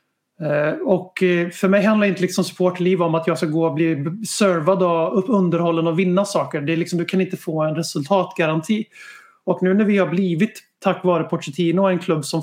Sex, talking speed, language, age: male, 205 wpm, Swedish, 30-49